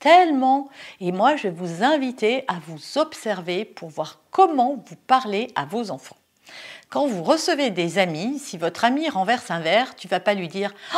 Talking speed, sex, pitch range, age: 190 wpm, female, 190-280 Hz, 50-69